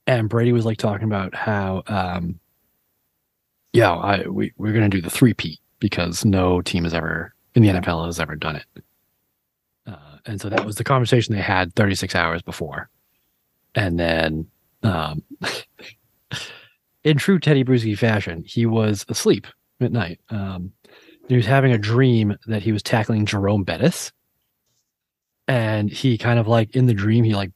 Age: 30-49